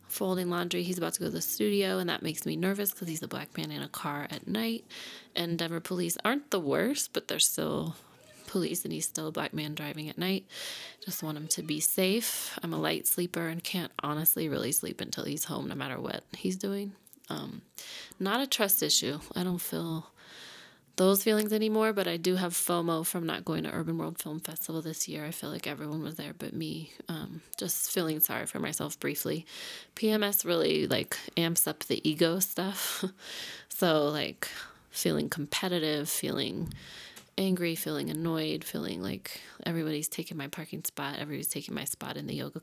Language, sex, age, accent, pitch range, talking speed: English, female, 20-39, American, 155-190 Hz, 195 wpm